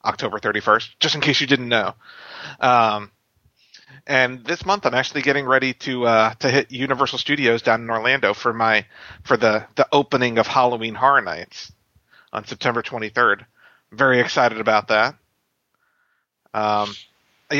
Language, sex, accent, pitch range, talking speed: English, male, American, 115-145 Hz, 155 wpm